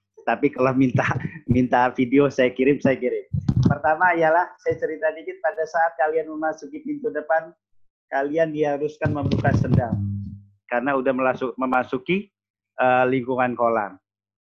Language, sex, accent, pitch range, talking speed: Indonesian, male, native, 125-155 Hz, 125 wpm